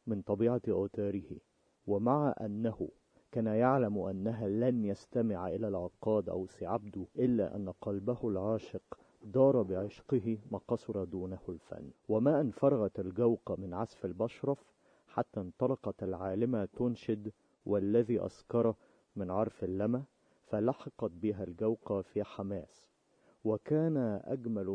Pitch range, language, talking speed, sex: 95-120 Hz, Arabic, 110 wpm, male